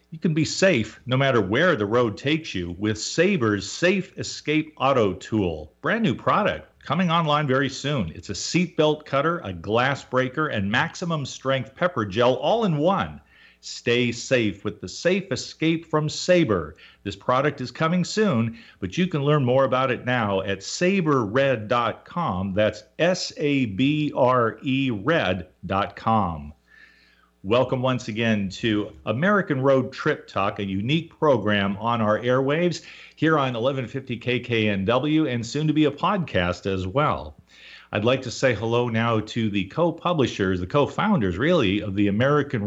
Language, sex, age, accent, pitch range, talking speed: English, male, 40-59, American, 105-150 Hz, 155 wpm